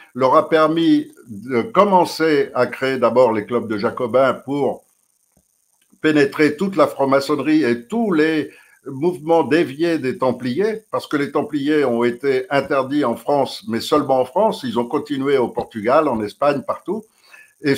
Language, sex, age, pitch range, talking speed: French, male, 60-79, 120-160 Hz, 155 wpm